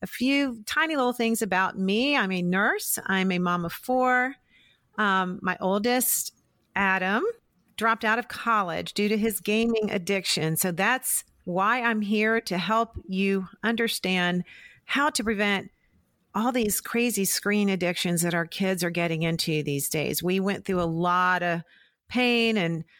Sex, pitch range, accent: female, 175-230 Hz, American